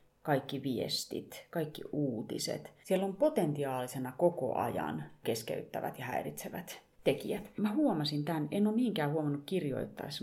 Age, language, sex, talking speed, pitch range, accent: 30-49, Finnish, female, 125 wpm, 145-215 Hz, native